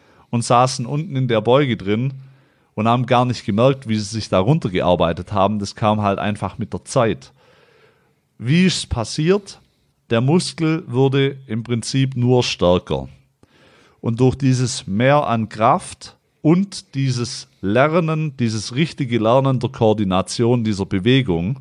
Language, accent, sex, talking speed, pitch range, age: German, German, male, 145 wpm, 105-135 Hz, 40-59